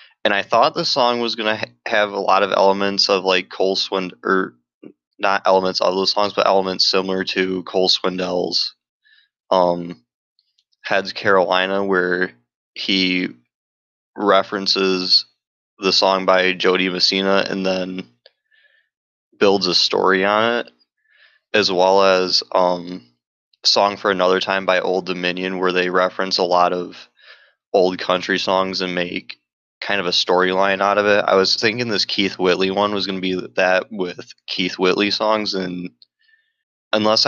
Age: 20-39